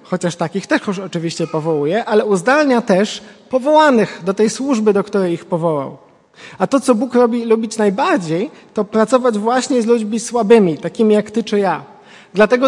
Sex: male